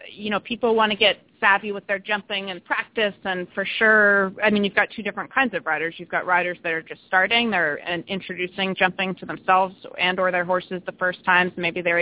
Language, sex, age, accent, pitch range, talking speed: English, female, 30-49, American, 175-195 Hz, 225 wpm